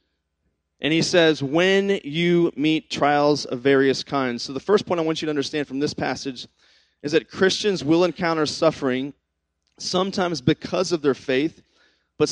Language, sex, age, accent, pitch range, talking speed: English, male, 30-49, American, 135-175 Hz, 165 wpm